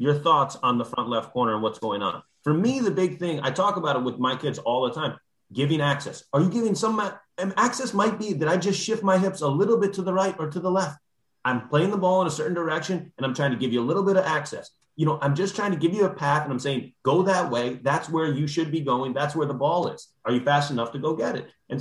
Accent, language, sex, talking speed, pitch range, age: American, English, male, 290 wpm, 125-175 Hz, 30-49